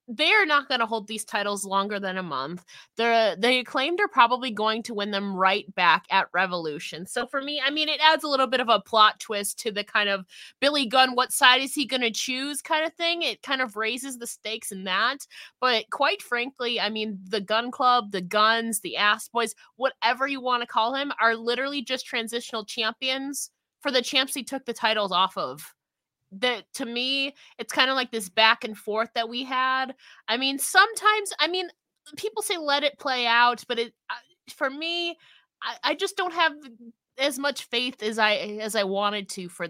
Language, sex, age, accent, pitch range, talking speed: English, female, 20-39, American, 205-270 Hz, 210 wpm